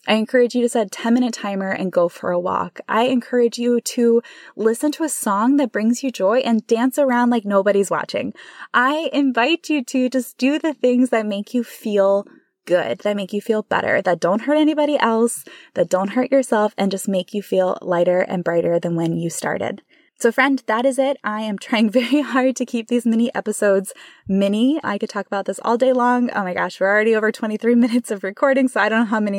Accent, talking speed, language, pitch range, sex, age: American, 225 wpm, English, 185-240 Hz, female, 20-39